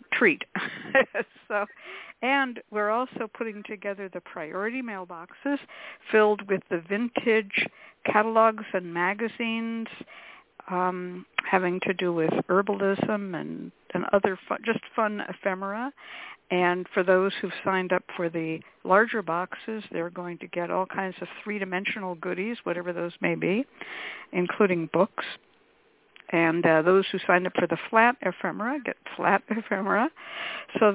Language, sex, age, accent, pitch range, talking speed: English, female, 60-79, American, 180-230 Hz, 135 wpm